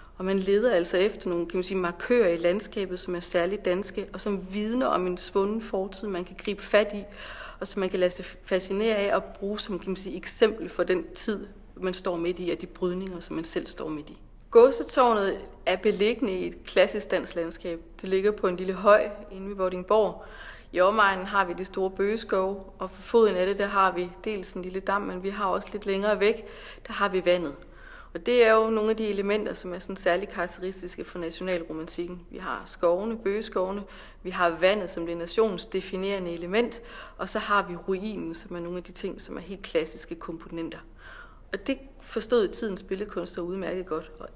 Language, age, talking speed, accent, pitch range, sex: German, 40-59, 210 wpm, Danish, 180-210 Hz, female